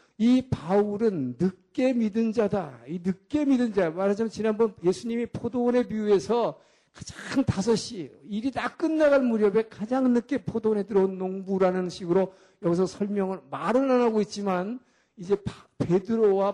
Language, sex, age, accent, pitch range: Korean, male, 50-69, native, 170-220 Hz